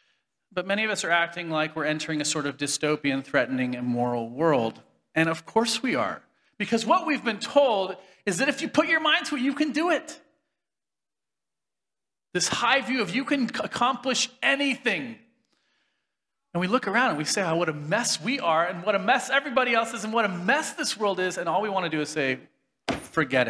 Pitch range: 130-215 Hz